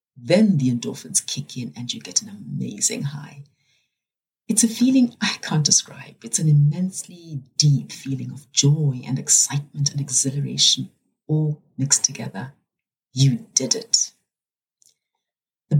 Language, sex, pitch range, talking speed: English, female, 135-170 Hz, 135 wpm